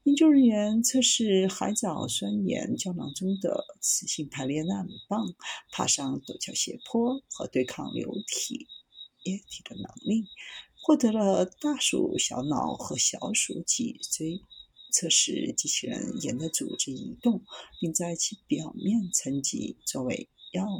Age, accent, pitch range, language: 50-69, native, 175-250 Hz, Chinese